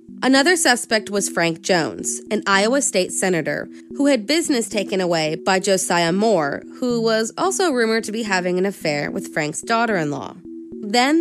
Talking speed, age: 160 wpm, 20-39